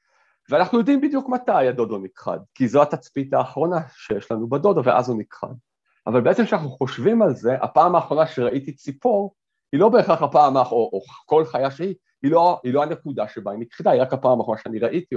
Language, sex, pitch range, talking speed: Hebrew, male, 120-165 Hz, 200 wpm